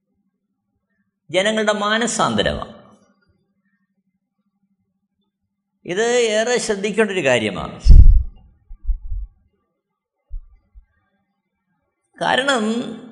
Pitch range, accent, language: 190-230 Hz, native, Malayalam